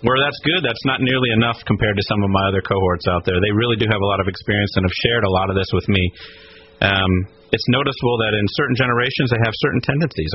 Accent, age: American, 40-59